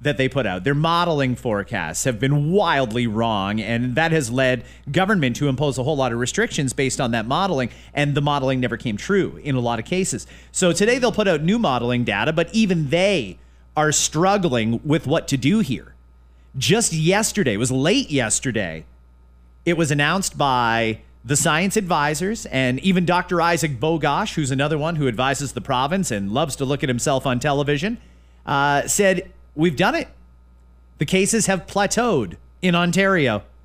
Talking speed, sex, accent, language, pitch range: 180 wpm, male, American, English, 125-180 Hz